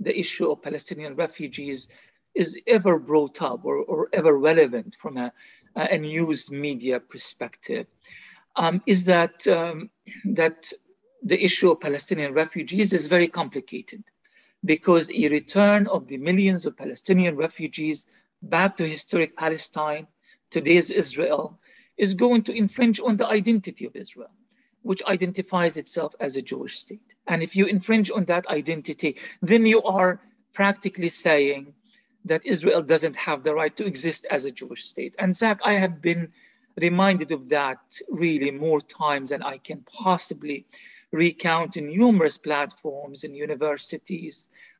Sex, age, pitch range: male, 50-69, 155-200 Hz